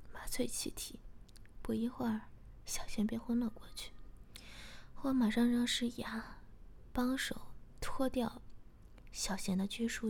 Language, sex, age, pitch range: Chinese, female, 20-39, 195-240 Hz